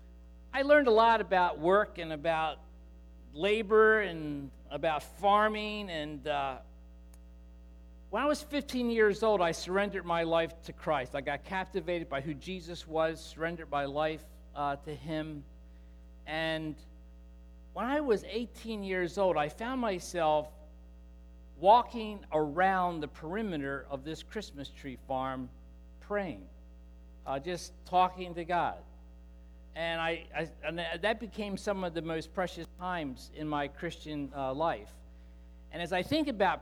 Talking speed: 140 wpm